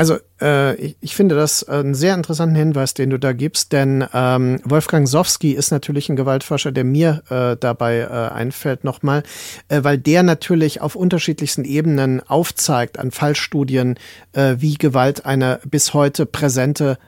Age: 40-59